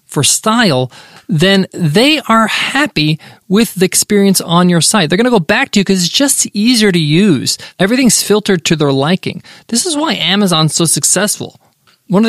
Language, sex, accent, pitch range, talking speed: English, male, American, 155-205 Hz, 185 wpm